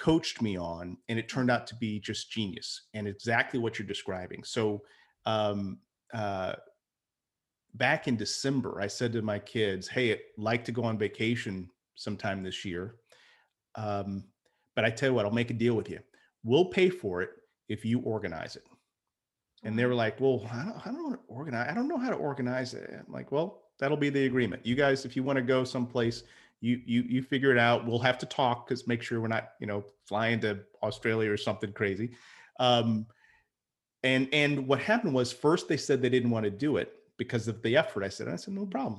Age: 40-59